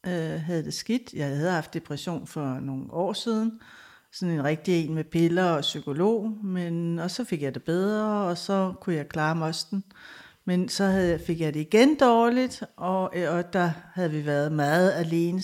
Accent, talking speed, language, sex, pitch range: native, 185 wpm, Danish, female, 155-190 Hz